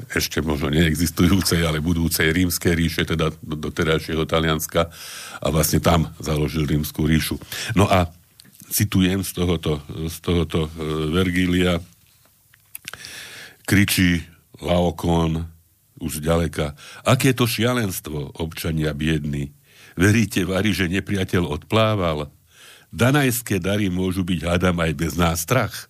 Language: Slovak